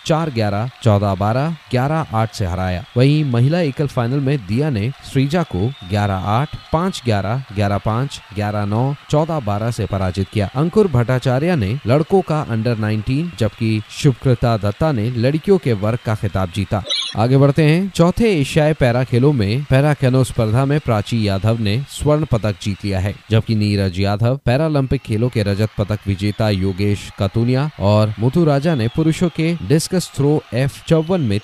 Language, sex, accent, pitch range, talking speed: Hindi, male, native, 105-140 Hz, 170 wpm